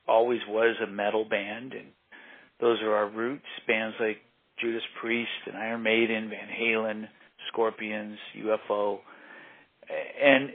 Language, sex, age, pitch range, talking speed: English, male, 40-59, 110-130 Hz, 125 wpm